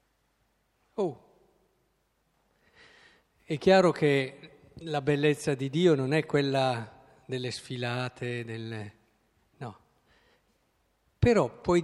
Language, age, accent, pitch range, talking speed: Italian, 50-69, native, 135-195 Hz, 85 wpm